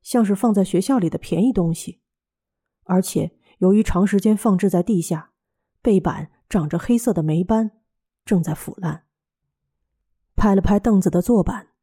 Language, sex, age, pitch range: Chinese, female, 30-49, 165-215 Hz